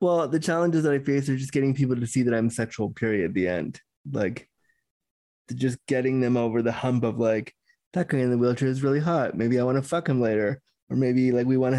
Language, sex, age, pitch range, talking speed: English, male, 20-39, 130-155 Hz, 250 wpm